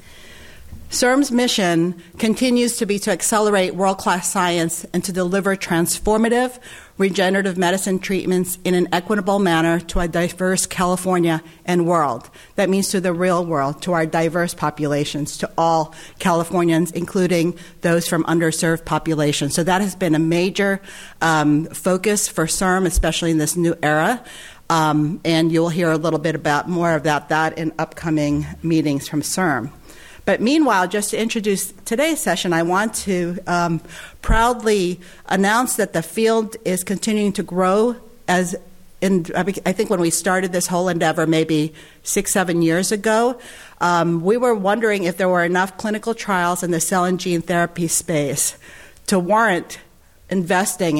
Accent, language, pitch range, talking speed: American, English, 165-195 Hz, 155 wpm